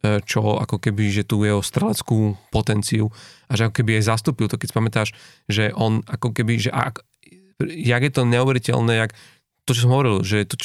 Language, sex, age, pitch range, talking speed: Slovak, male, 30-49, 110-120 Hz, 190 wpm